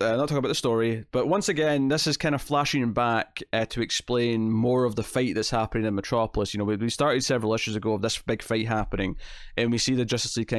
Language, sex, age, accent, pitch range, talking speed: English, male, 20-39, British, 105-145 Hz, 260 wpm